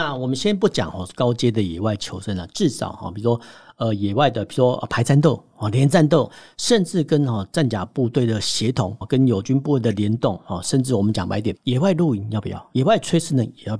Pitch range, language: 105-145 Hz, Chinese